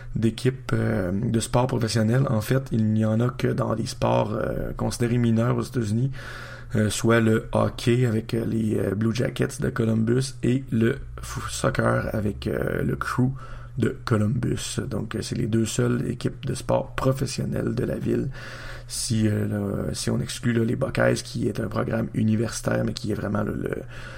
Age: 30-49